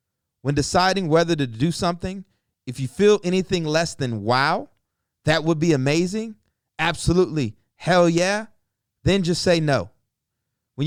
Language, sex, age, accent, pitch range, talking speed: English, male, 30-49, American, 130-175 Hz, 140 wpm